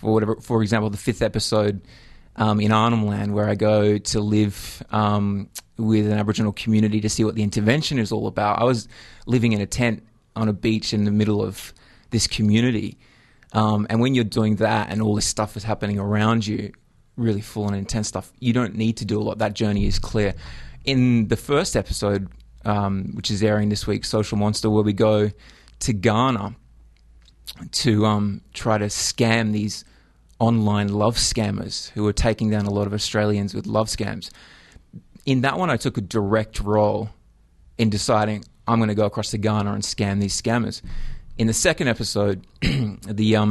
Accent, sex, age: Australian, male, 20-39